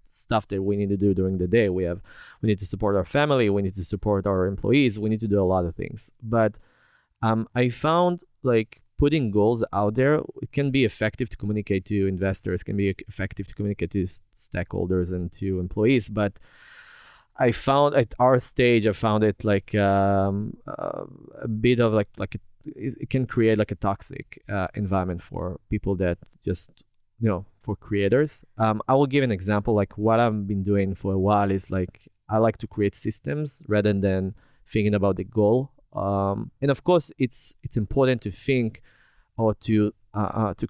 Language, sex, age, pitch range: Hebrew, male, 30-49, 100-120 Hz